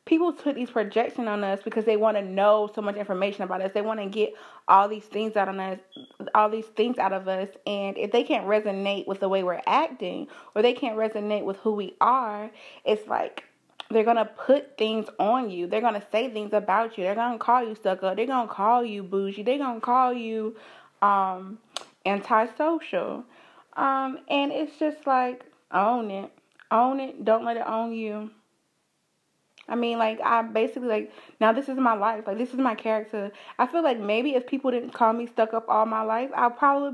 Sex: female